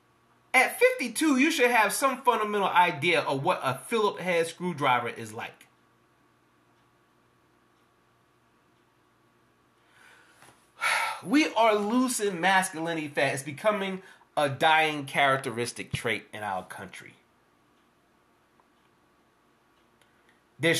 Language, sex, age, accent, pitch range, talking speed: English, male, 30-49, American, 155-255 Hz, 90 wpm